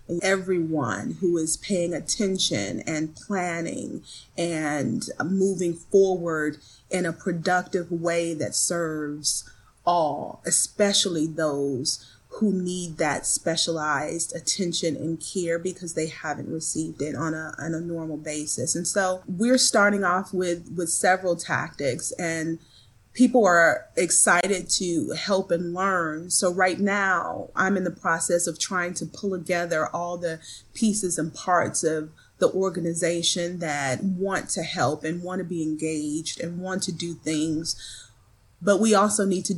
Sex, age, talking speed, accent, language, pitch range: female, 30-49, 140 wpm, American, English, 160-185 Hz